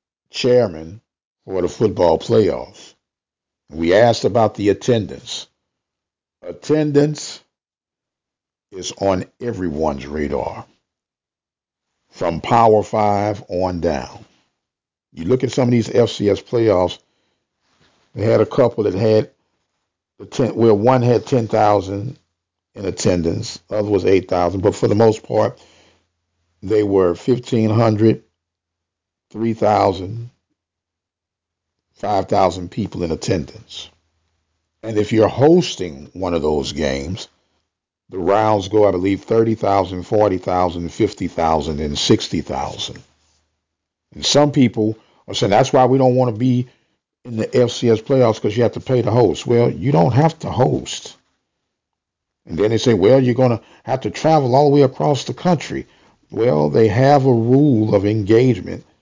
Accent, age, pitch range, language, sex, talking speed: American, 50-69, 90-120 Hz, English, male, 130 wpm